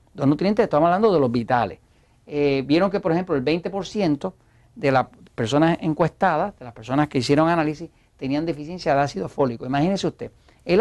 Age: 40-59